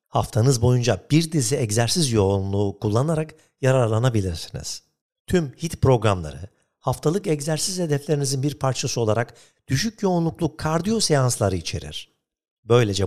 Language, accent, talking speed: Turkish, native, 105 wpm